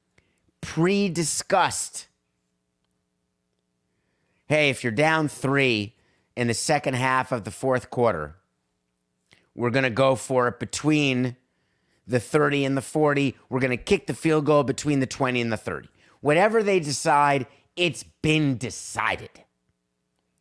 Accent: American